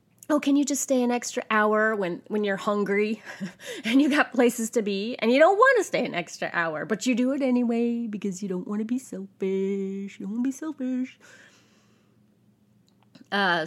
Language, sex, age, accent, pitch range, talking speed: English, female, 30-49, American, 195-255 Hz, 200 wpm